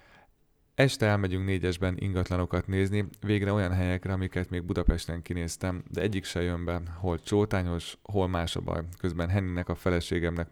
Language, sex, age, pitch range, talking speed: Hungarian, male, 30-49, 85-95 Hz, 155 wpm